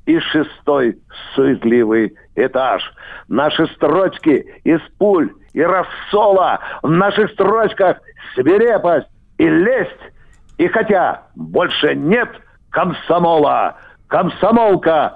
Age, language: 60-79, Russian